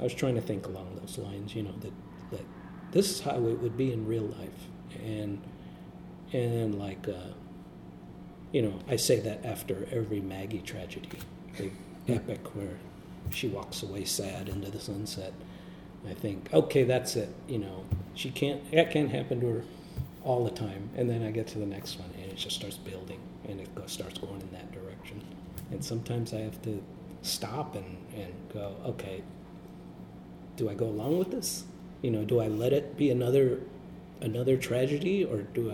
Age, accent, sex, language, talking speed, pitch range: 40-59, American, male, English, 185 wpm, 95-125 Hz